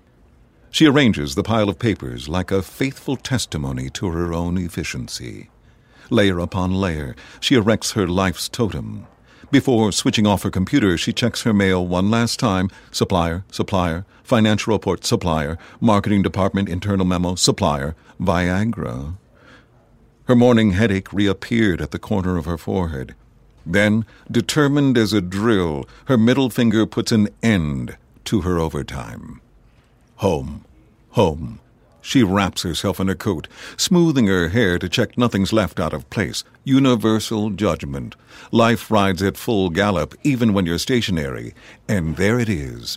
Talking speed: 140 wpm